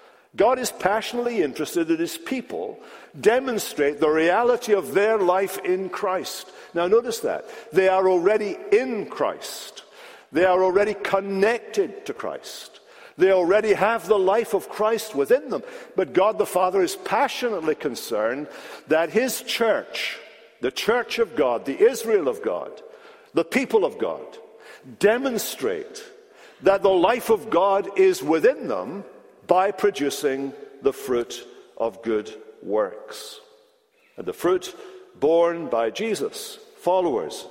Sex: male